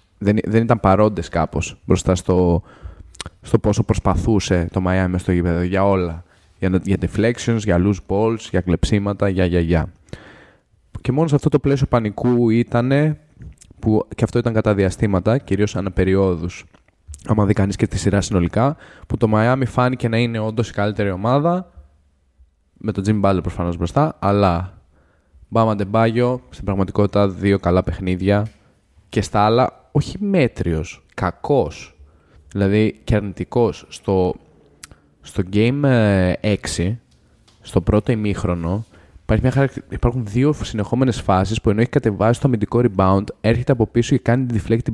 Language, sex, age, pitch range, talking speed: Greek, male, 20-39, 90-120 Hz, 150 wpm